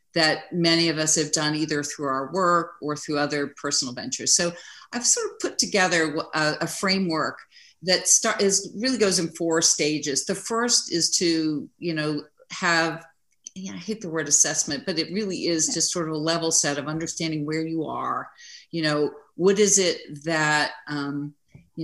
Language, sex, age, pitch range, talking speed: English, female, 50-69, 145-170 Hz, 180 wpm